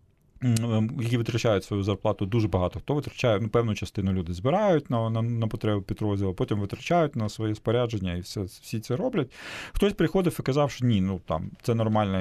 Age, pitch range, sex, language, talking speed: 40-59, 105-130 Hz, male, Ukrainian, 185 wpm